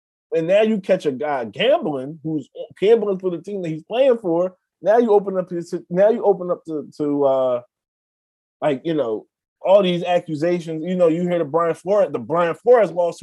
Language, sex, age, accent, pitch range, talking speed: English, male, 30-49, American, 140-200 Hz, 205 wpm